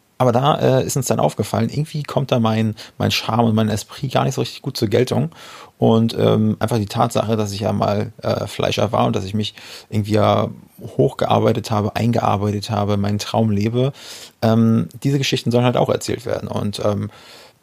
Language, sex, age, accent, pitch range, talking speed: German, male, 30-49, German, 105-120 Hz, 195 wpm